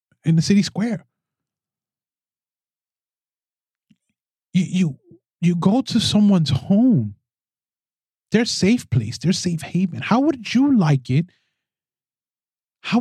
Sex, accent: male, American